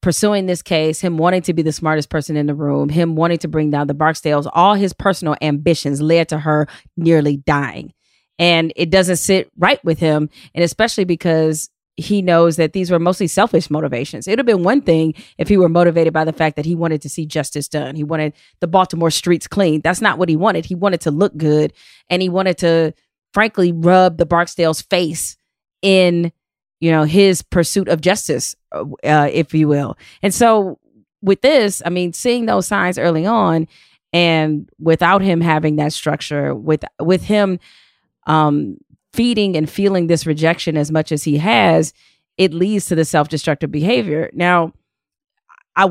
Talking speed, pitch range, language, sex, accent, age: 185 wpm, 155-195 Hz, English, female, American, 30-49